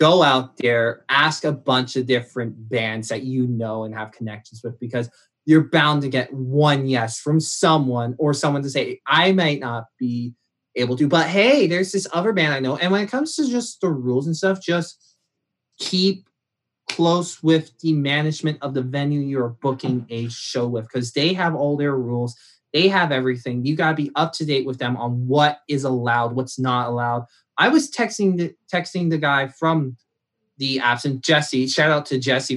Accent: American